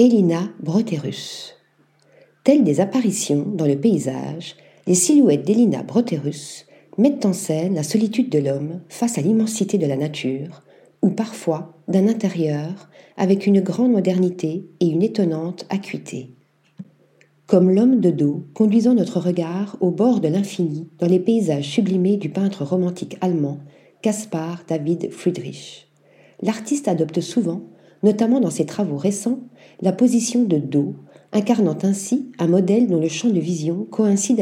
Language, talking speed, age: French, 140 wpm, 40-59